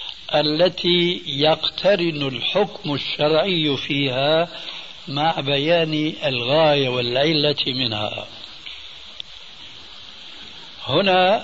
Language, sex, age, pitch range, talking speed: Arabic, male, 70-89, 135-170 Hz, 60 wpm